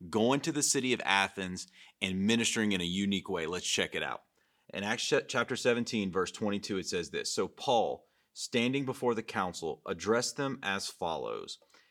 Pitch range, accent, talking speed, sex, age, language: 95-125 Hz, American, 175 wpm, male, 30-49, English